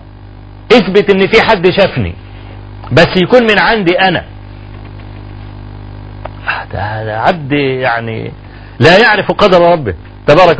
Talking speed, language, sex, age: 95 wpm, Arabic, male, 40-59